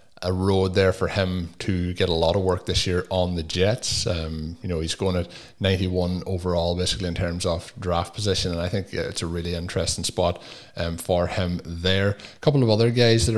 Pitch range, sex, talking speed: 90-100 Hz, male, 215 wpm